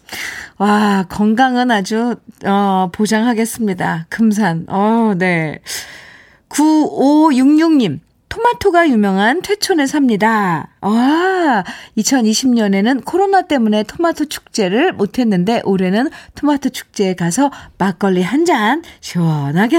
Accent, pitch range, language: native, 175-270 Hz, Korean